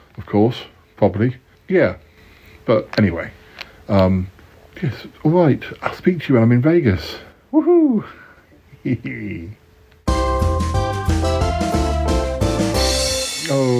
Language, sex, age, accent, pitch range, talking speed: English, male, 60-79, British, 95-130 Hz, 85 wpm